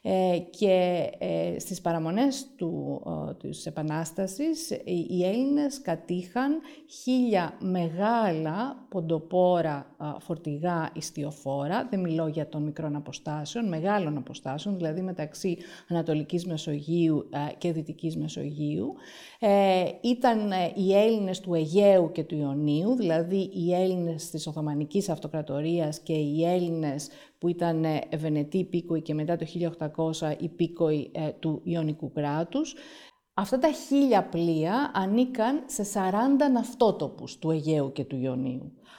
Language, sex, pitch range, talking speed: Greek, female, 160-210 Hz, 110 wpm